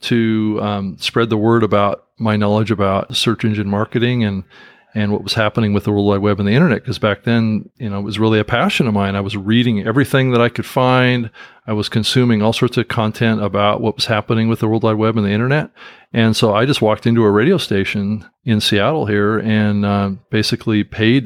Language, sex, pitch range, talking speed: English, male, 105-120 Hz, 225 wpm